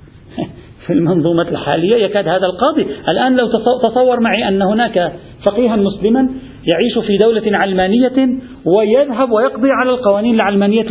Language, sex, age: Arabic, male, 40-59